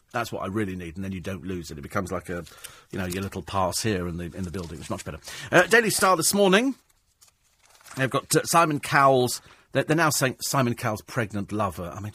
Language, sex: English, male